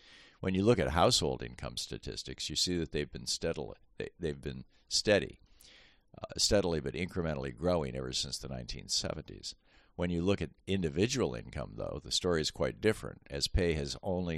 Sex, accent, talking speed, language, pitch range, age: male, American, 160 wpm, English, 70-85 Hz, 50-69